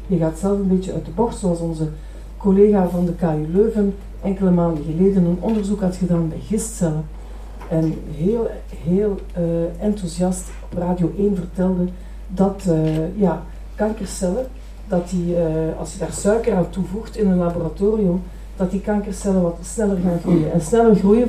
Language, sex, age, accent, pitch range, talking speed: Dutch, female, 40-59, Dutch, 175-205 Hz, 165 wpm